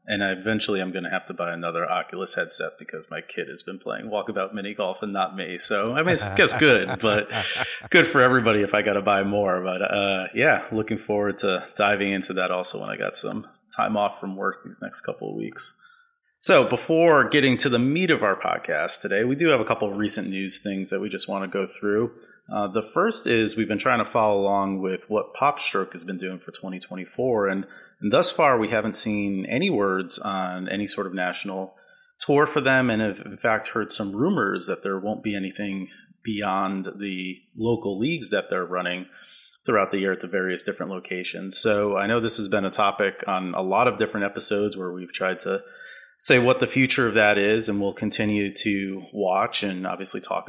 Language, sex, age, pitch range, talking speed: English, male, 30-49, 95-115 Hz, 215 wpm